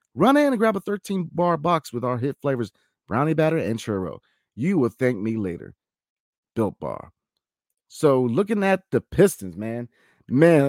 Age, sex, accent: 30-49, male, American